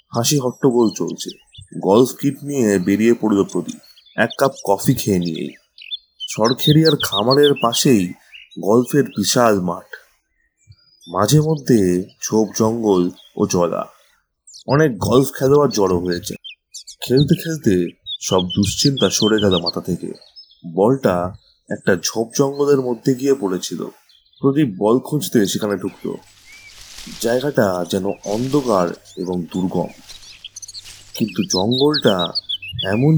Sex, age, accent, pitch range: male, 30-49, native, 95-135 Hz